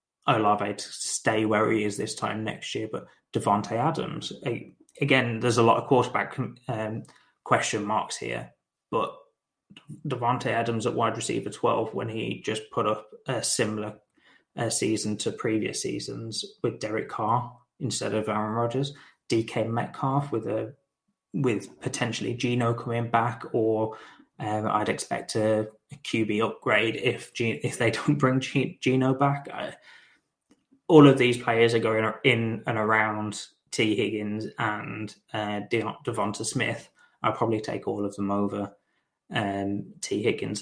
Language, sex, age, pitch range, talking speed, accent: English, male, 20-39, 105-125 Hz, 150 wpm, British